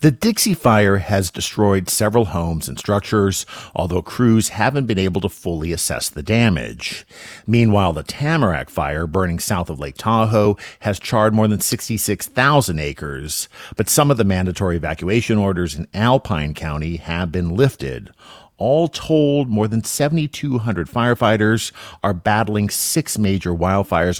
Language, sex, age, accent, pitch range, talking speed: English, male, 50-69, American, 85-115 Hz, 145 wpm